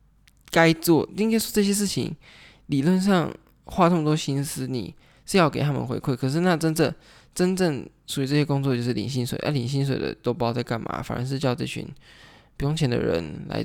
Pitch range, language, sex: 125-150 Hz, Chinese, male